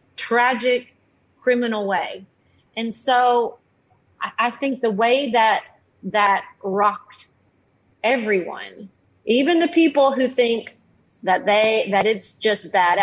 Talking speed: 115 wpm